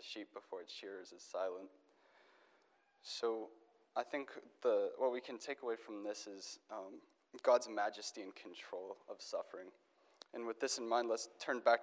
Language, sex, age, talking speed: English, male, 20-39, 165 wpm